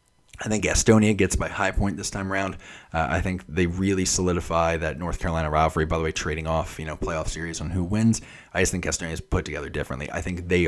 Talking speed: 240 wpm